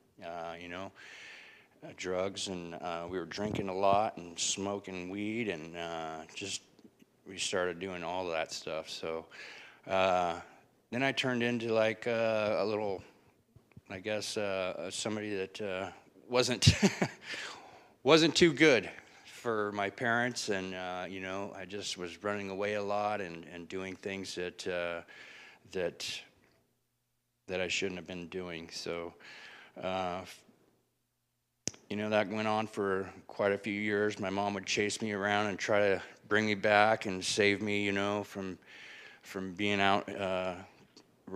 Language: English